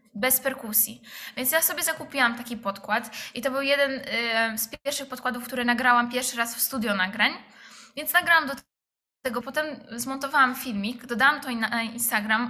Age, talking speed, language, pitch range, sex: 10-29, 160 wpm, Polish, 230-260 Hz, female